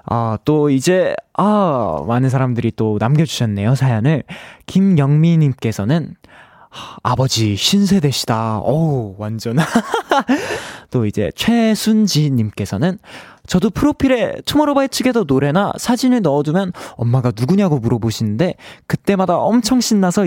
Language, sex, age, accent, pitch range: Korean, male, 20-39, native, 115-190 Hz